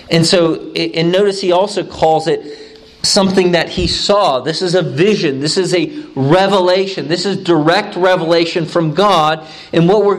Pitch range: 120-195 Hz